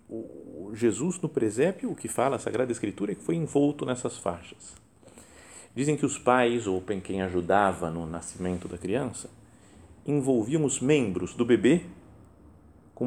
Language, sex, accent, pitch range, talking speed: Portuguese, male, Brazilian, 95-145 Hz, 150 wpm